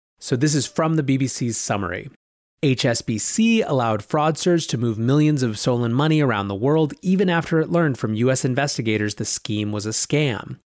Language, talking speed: English, 175 wpm